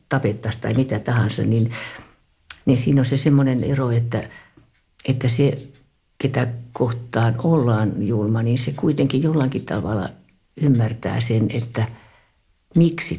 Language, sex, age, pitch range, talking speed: Finnish, female, 60-79, 105-145 Hz, 120 wpm